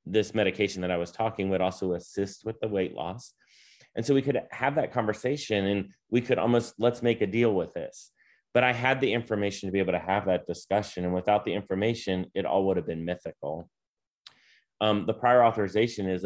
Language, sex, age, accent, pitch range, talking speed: English, male, 30-49, American, 95-110 Hz, 210 wpm